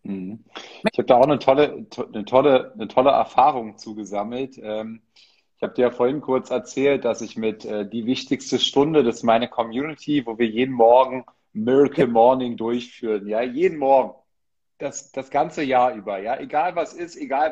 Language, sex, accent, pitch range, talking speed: German, male, German, 125-155 Hz, 180 wpm